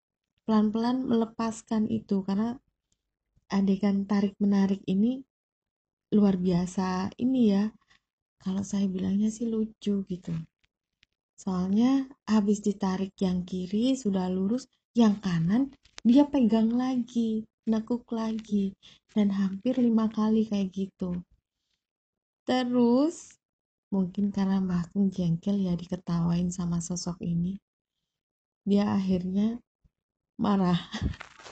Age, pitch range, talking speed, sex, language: 20-39, 185-220 Hz, 95 wpm, female, Indonesian